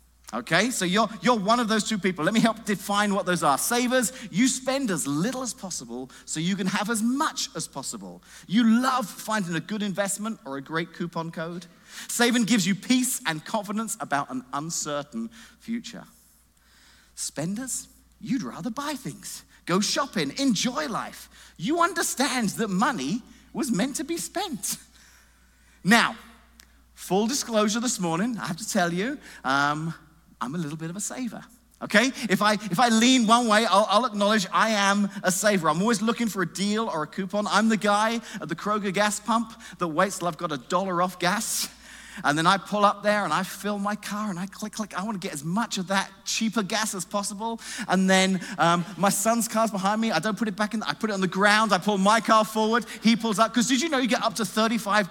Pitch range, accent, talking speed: 190-235 Hz, British, 210 wpm